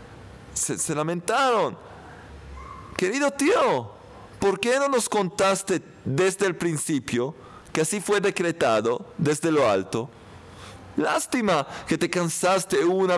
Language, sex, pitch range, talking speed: Spanish, male, 120-200 Hz, 115 wpm